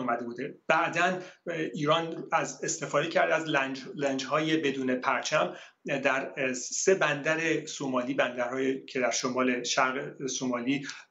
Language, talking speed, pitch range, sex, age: Persian, 110 wpm, 130-145 Hz, male, 30-49